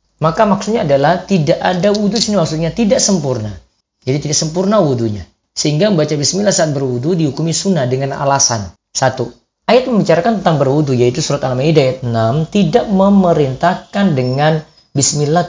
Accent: native